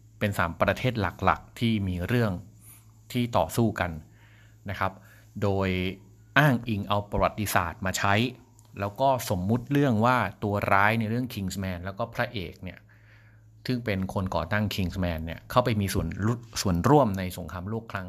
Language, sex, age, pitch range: Thai, male, 30-49, 95-115 Hz